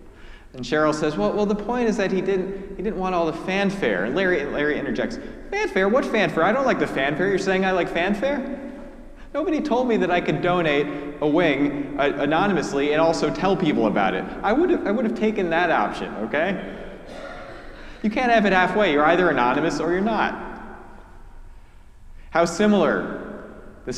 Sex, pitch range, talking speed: male, 115-185 Hz, 180 wpm